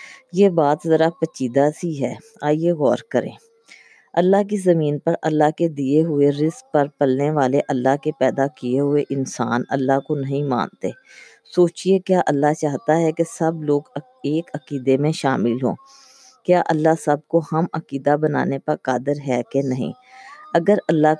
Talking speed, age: 165 wpm, 20-39